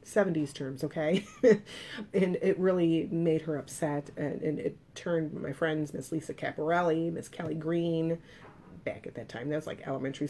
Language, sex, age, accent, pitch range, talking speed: English, female, 30-49, American, 160-200 Hz, 170 wpm